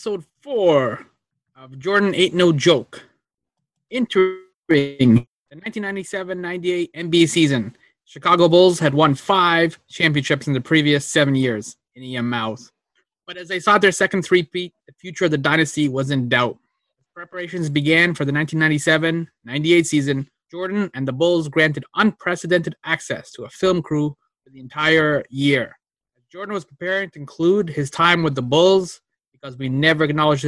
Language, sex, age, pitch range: English, male, 20-39, 145-180 Hz